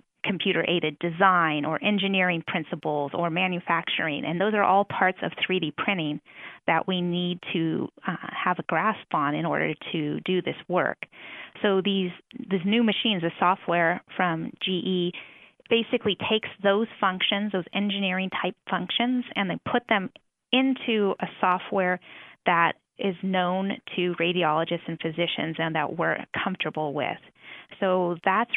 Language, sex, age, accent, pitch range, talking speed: English, female, 30-49, American, 165-195 Hz, 145 wpm